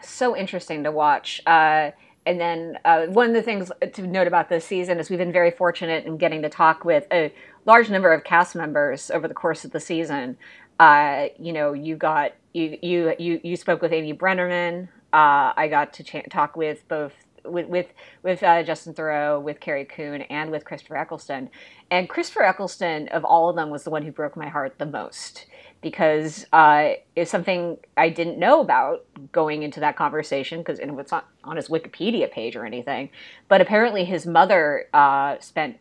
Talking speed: 195 wpm